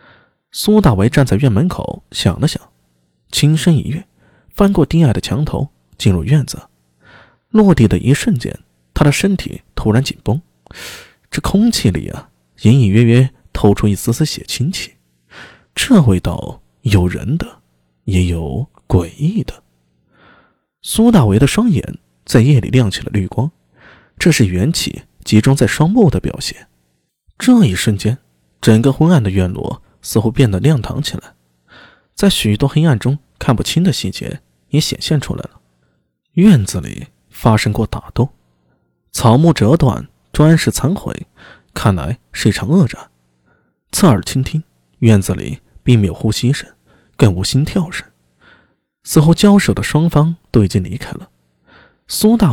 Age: 20-39